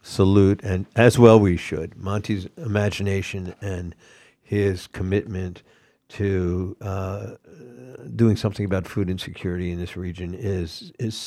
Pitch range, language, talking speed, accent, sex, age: 90-115 Hz, English, 120 wpm, American, male, 60-79